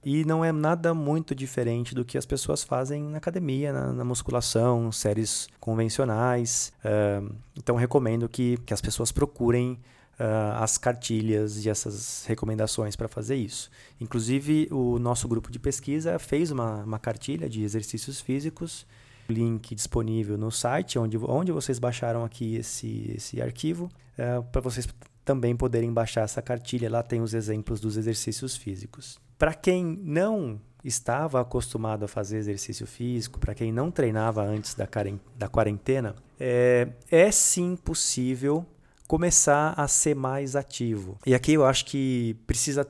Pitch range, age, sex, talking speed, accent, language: 110-135 Hz, 20-39, male, 145 wpm, Brazilian, Portuguese